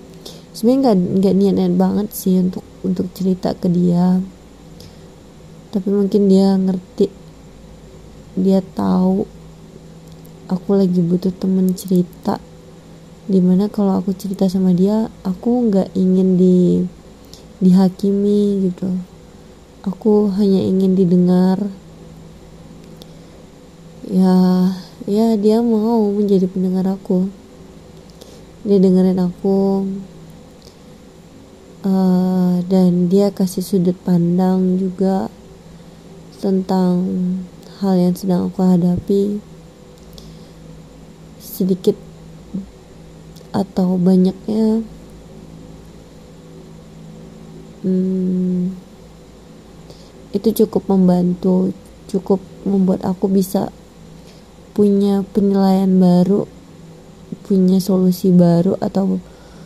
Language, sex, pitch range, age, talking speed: Indonesian, female, 180-195 Hz, 20-39, 80 wpm